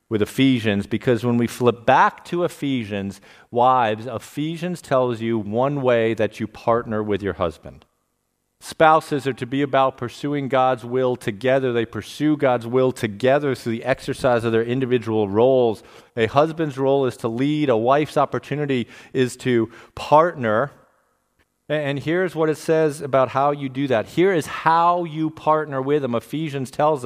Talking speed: 160 wpm